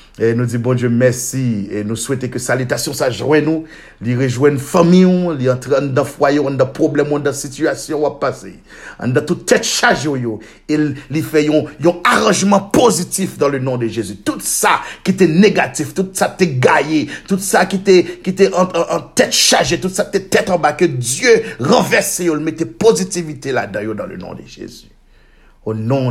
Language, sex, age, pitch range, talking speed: French, male, 50-69, 110-155 Hz, 200 wpm